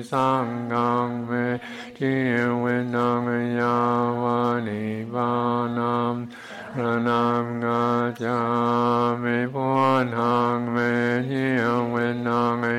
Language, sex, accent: English, male, American